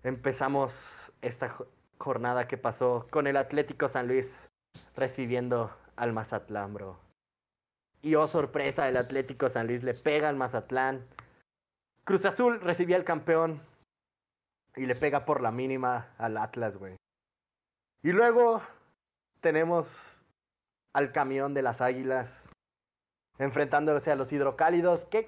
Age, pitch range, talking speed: 30-49, 120-165 Hz, 125 wpm